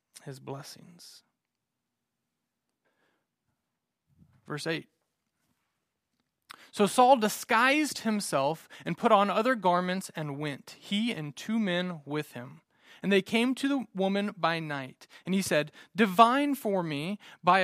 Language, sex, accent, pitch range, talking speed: English, male, American, 155-225 Hz, 120 wpm